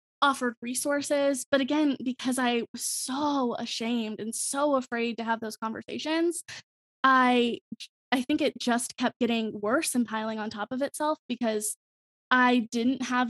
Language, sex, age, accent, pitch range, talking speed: English, female, 10-29, American, 230-285 Hz, 155 wpm